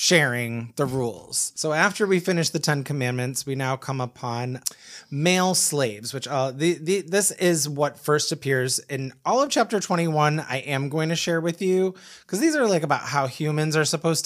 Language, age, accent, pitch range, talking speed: English, 20-39, American, 130-175 Hz, 195 wpm